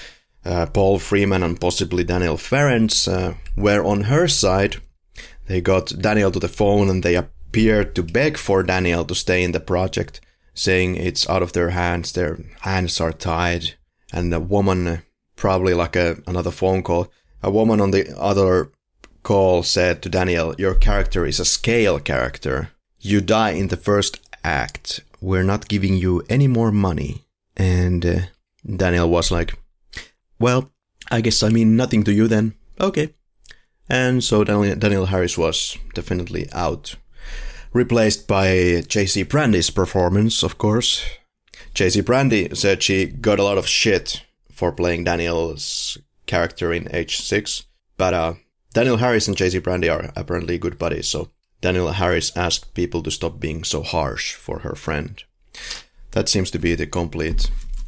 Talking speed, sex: 155 wpm, male